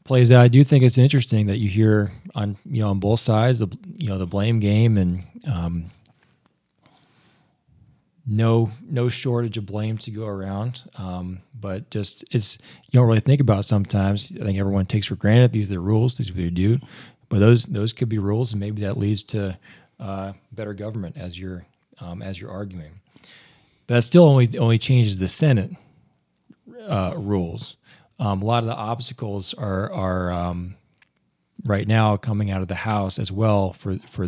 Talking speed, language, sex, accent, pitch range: 185 wpm, English, male, American, 100-125 Hz